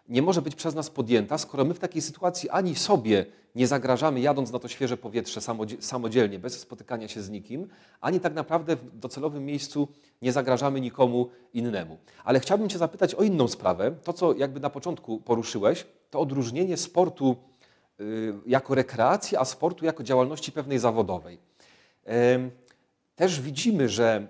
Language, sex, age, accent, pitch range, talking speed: Polish, male, 40-59, native, 115-145 Hz, 155 wpm